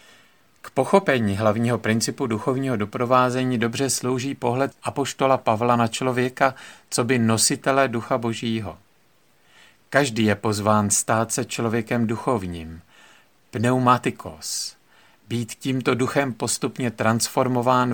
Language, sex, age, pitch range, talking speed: Czech, male, 50-69, 105-125 Hz, 100 wpm